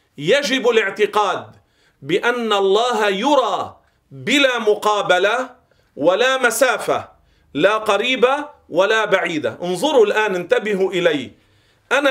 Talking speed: 90 wpm